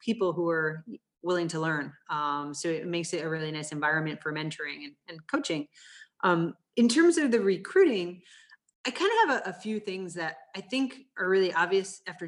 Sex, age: female, 30-49